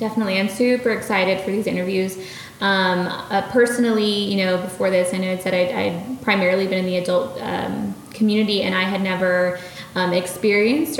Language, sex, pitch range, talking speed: English, female, 185-210 Hz, 175 wpm